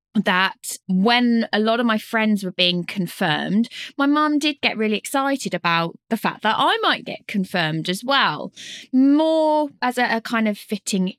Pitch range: 180-230 Hz